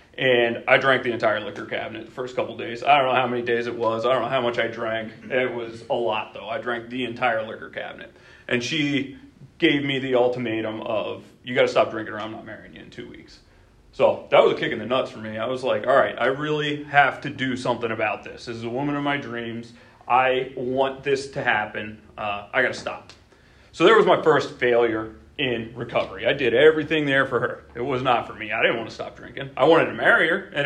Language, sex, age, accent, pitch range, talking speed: English, male, 30-49, American, 120-140 Hz, 250 wpm